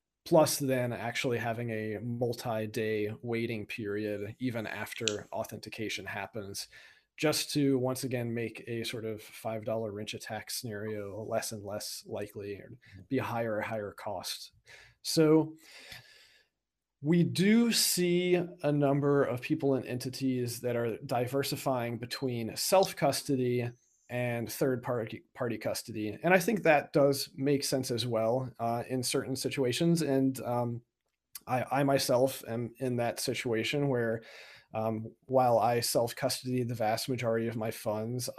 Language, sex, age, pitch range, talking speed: English, male, 40-59, 110-130 Hz, 140 wpm